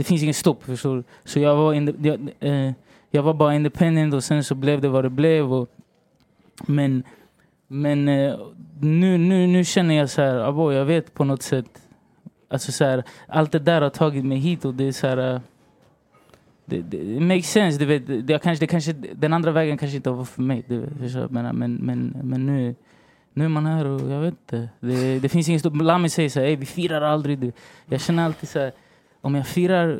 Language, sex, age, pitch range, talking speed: English, male, 20-39, 135-170 Hz, 220 wpm